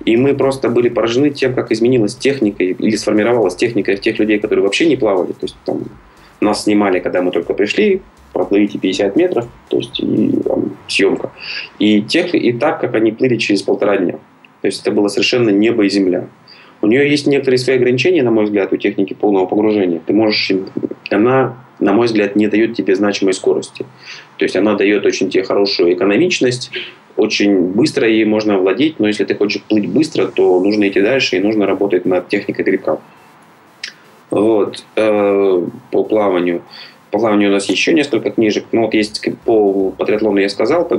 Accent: native